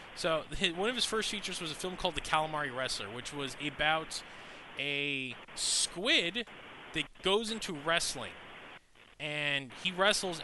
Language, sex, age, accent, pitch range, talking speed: English, male, 20-39, American, 140-180 Hz, 145 wpm